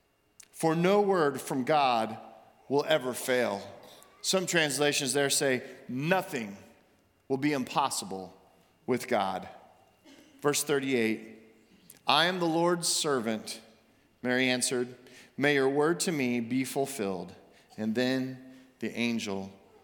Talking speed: 115 wpm